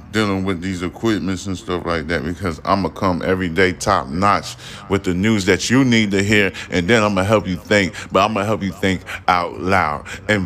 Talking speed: 240 wpm